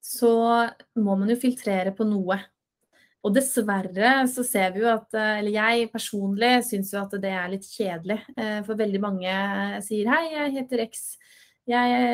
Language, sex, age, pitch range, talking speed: English, female, 20-39, 205-250 Hz, 170 wpm